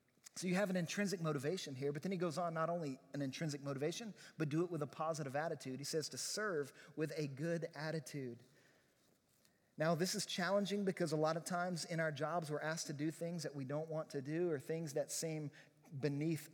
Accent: American